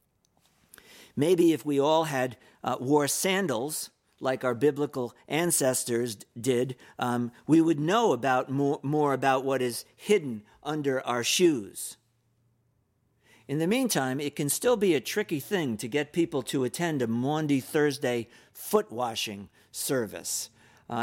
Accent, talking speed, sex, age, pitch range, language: American, 135 wpm, male, 50-69, 115-145 Hz, English